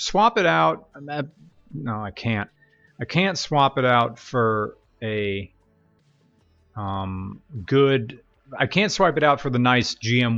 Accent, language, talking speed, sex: American, English, 150 wpm, male